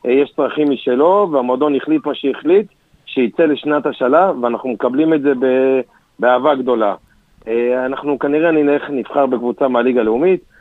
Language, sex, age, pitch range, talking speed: Hebrew, male, 40-59, 125-155 Hz, 125 wpm